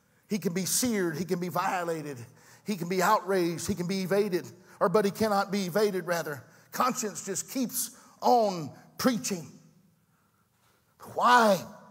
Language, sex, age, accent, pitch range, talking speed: English, male, 50-69, American, 170-215 Hz, 145 wpm